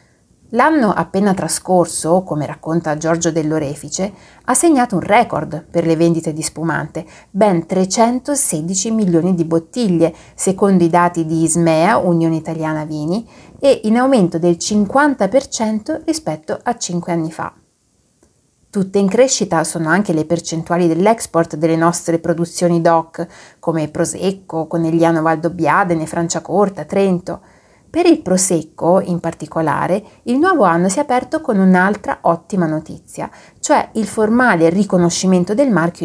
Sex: female